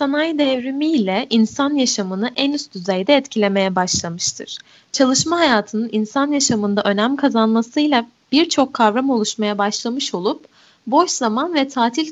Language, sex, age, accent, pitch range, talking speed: Turkish, female, 10-29, native, 215-285 Hz, 120 wpm